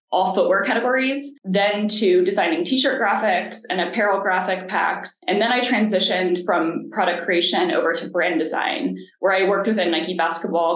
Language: English